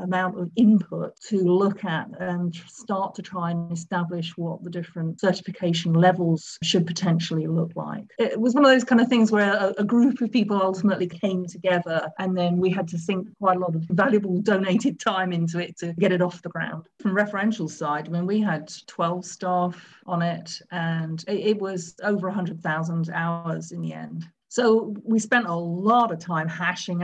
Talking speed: 200 wpm